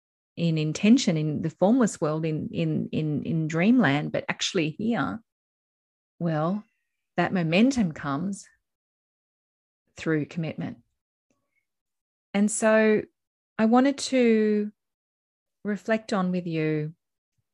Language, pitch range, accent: English, 160-210 Hz, Australian